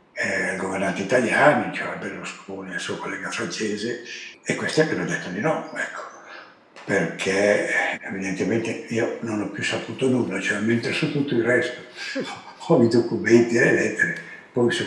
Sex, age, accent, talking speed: male, 60-79, native, 155 wpm